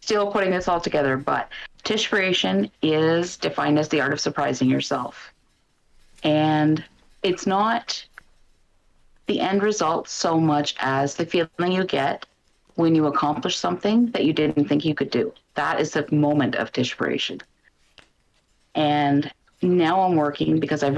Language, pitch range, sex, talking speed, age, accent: English, 140-180 Hz, female, 145 wpm, 30-49, American